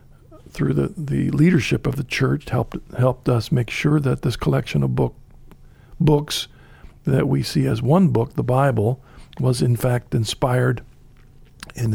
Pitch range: 125-145 Hz